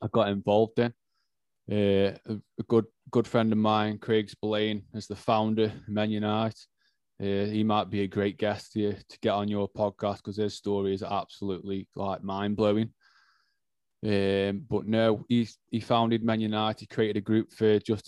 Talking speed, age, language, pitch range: 180 wpm, 20-39, English, 100-115 Hz